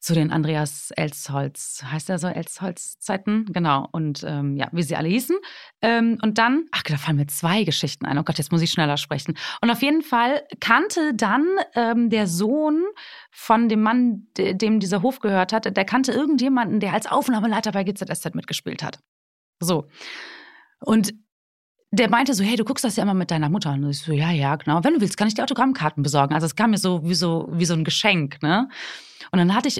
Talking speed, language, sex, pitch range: 210 wpm, German, female, 160-220 Hz